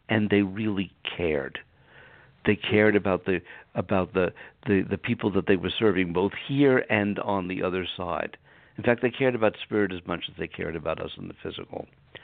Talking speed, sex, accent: 195 wpm, male, American